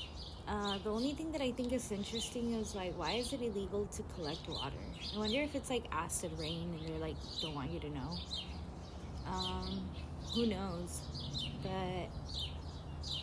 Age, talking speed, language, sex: 20-39, 170 wpm, English, female